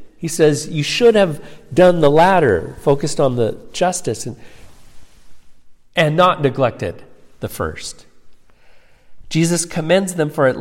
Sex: male